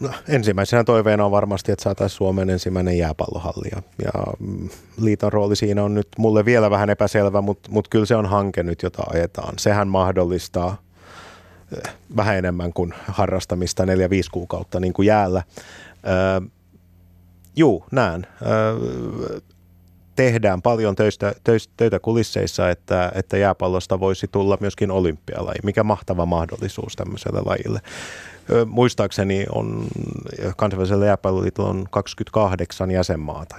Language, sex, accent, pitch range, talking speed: Finnish, male, native, 90-105 Hz, 125 wpm